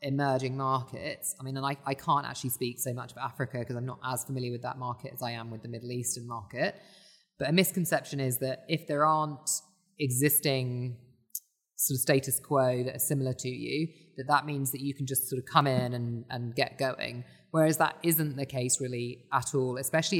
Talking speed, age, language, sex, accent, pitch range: 215 wpm, 20-39, English, female, British, 130-150 Hz